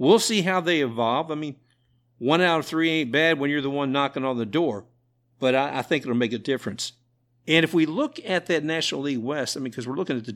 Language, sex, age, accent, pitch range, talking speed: English, male, 50-69, American, 120-135 Hz, 260 wpm